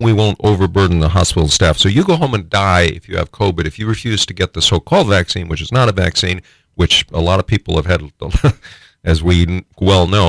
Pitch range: 85-125 Hz